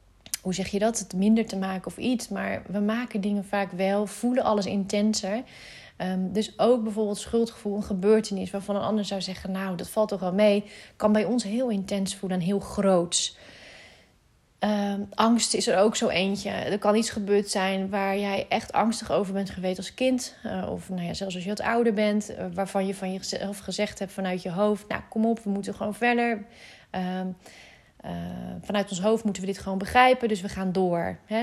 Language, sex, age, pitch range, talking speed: Dutch, female, 30-49, 195-220 Hz, 200 wpm